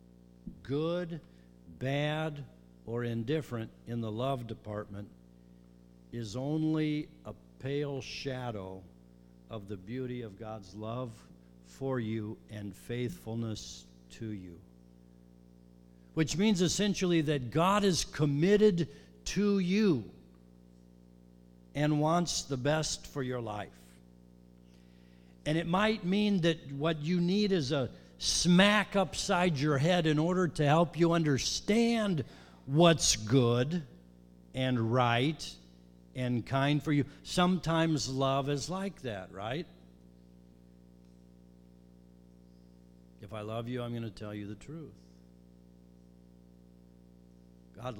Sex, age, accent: male, 60-79, American